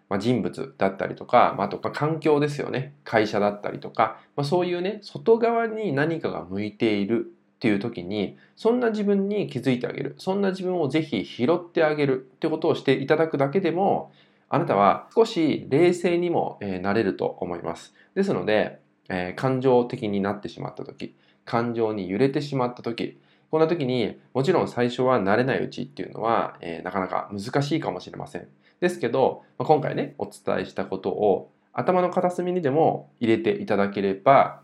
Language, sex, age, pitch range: Japanese, male, 20-39, 100-160 Hz